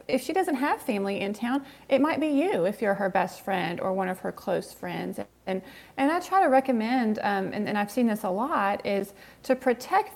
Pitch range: 190-245 Hz